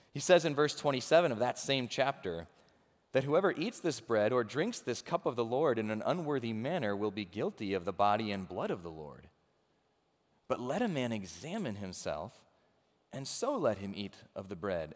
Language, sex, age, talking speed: English, male, 30-49, 200 wpm